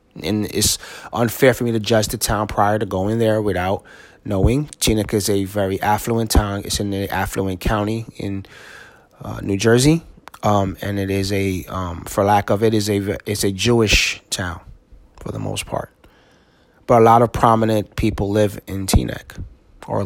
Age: 30-49